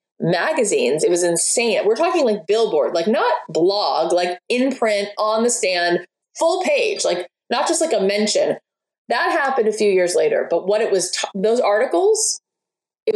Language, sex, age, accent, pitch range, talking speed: English, female, 20-39, American, 180-260 Hz, 175 wpm